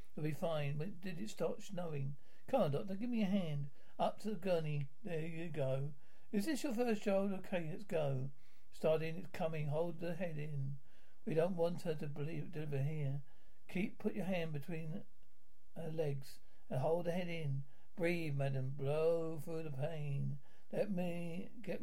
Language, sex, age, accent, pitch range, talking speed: English, male, 60-79, British, 150-185 Hz, 180 wpm